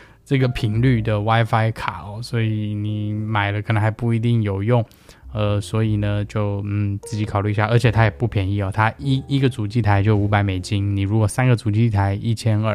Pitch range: 105-140 Hz